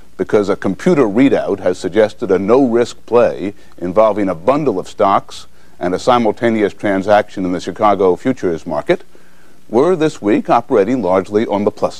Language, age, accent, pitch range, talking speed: English, 60-79, American, 90-130 Hz, 155 wpm